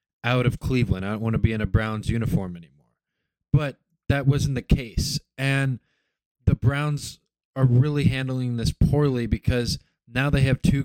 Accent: American